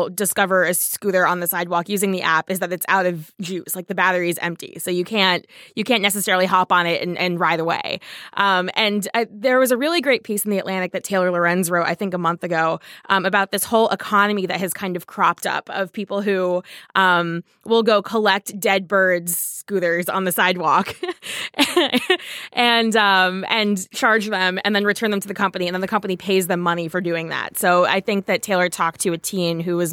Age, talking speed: 20-39, 225 wpm